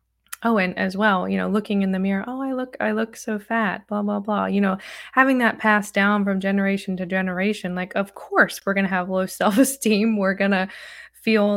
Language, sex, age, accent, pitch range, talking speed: English, female, 20-39, American, 190-220 Hz, 225 wpm